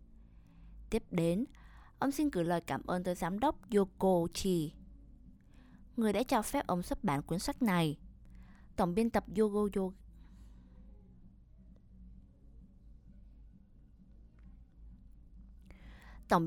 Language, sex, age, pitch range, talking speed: Vietnamese, female, 20-39, 170-220 Hz, 100 wpm